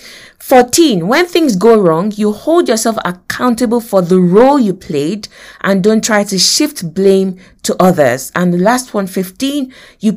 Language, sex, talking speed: English, female, 165 wpm